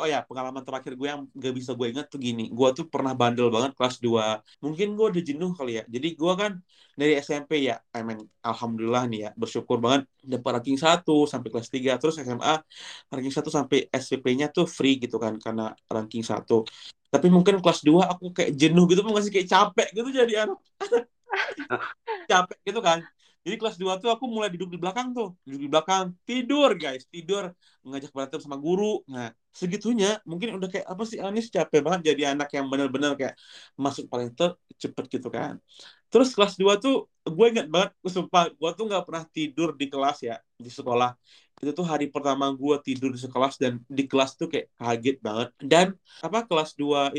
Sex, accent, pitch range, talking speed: male, native, 130-180 Hz, 190 wpm